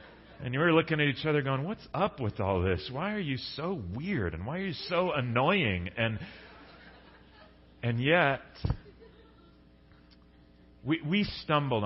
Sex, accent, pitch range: male, American, 85-125 Hz